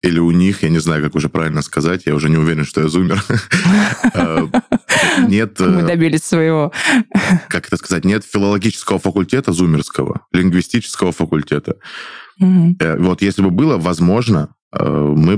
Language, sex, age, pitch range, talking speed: Russian, male, 20-39, 85-105 Hz, 135 wpm